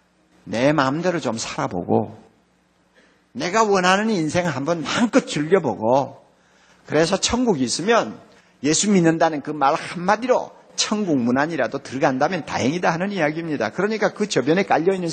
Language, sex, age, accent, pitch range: Korean, male, 50-69, native, 180-265 Hz